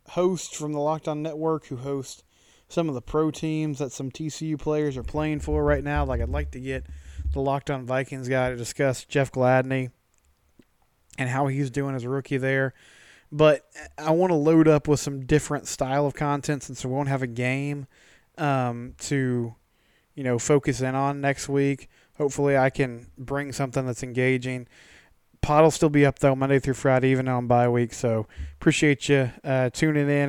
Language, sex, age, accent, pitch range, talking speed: English, male, 20-39, American, 125-145 Hz, 190 wpm